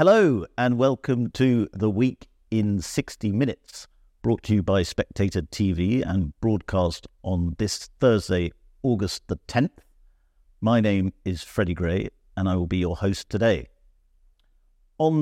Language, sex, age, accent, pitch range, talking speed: English, male, 50-69, British, 85-110 Hz, 140 wpm